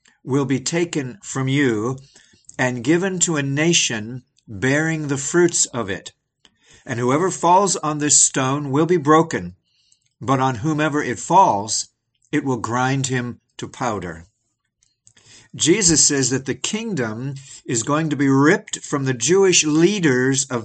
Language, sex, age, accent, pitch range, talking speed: English, male, 50-69, American, 120-160 Hz, 145 wpm